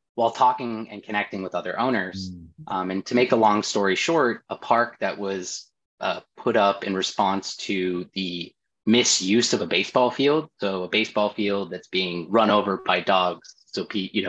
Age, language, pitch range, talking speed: 20-39, English, 95-110 Hz, 180 wpm